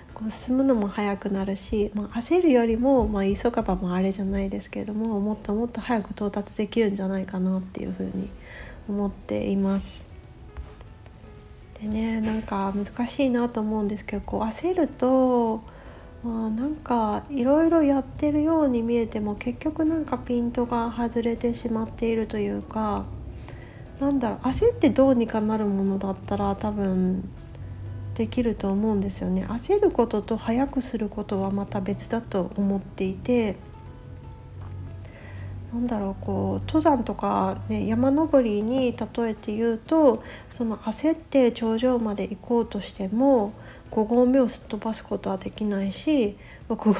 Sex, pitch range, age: female, 195-240 Hz, 40-59